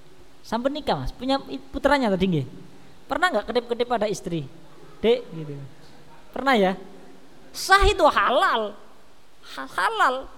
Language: Indonesian